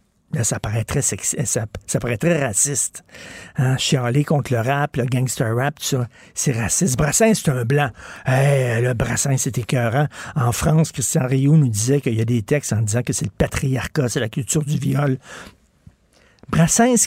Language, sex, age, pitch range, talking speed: French, male, 60-79, 120-150 Hz, 190 wpm